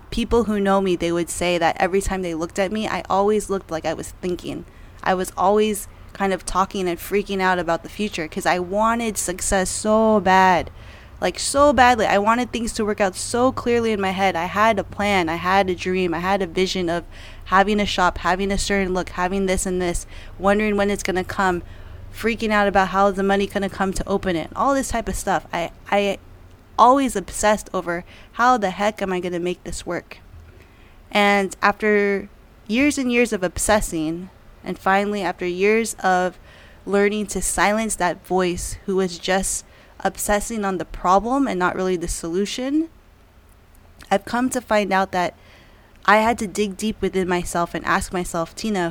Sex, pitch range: female, 175-205 Hz